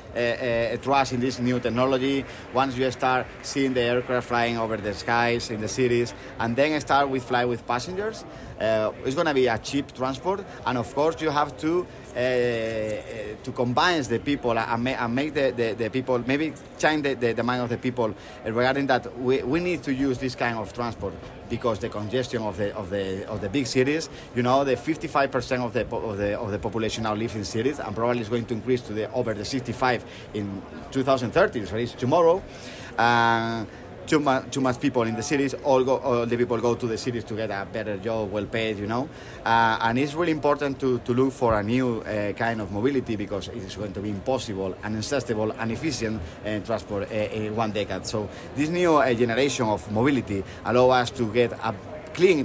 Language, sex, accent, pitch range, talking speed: English, male, Spanish, 110-130 Hz, 205 wpm